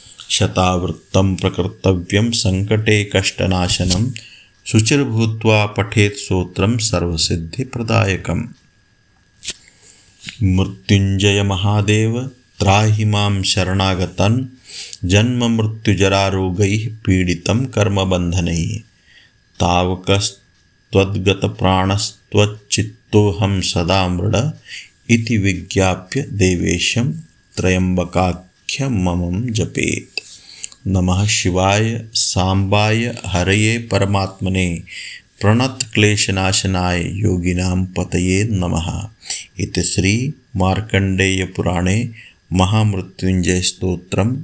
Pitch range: 90-110 Hz